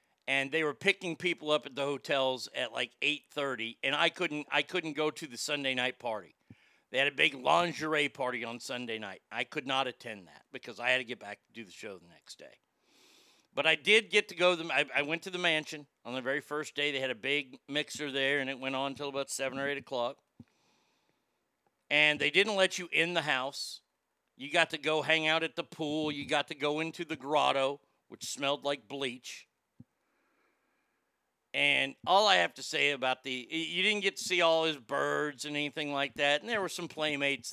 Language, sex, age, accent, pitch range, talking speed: English, male, 50-69, American, 130-160 Hz, 220 wpm